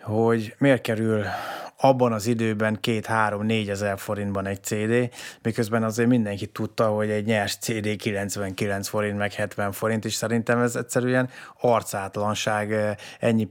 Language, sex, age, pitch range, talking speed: Hungarian, male, 20-39, 105-120 Hz, 140 wpm